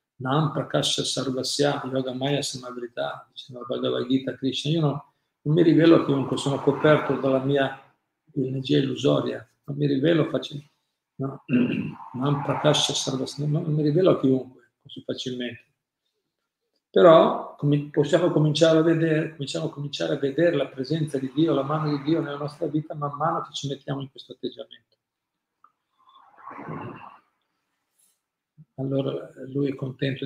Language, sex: Italian, male